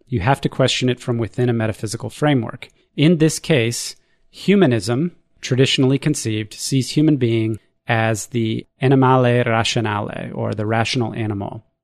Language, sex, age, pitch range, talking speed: English, male, 30-49, 115-135 Hz, 135 wpm